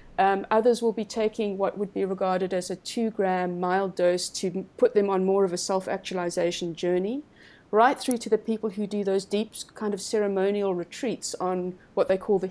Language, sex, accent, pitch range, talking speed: English, female, British, 190-235 Hz, 200 wpm